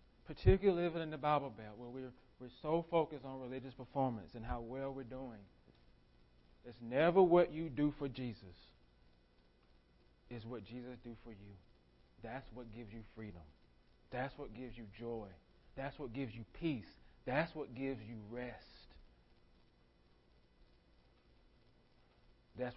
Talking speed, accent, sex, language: 140 wpm, American, male, English